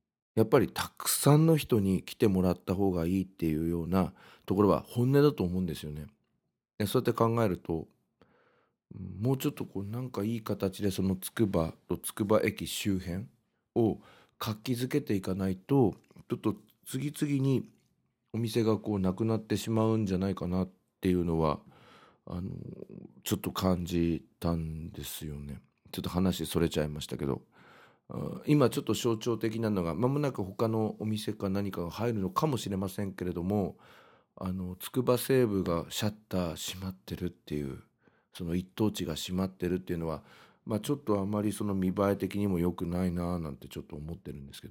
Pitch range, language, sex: 90-115 Hz, Japanese, male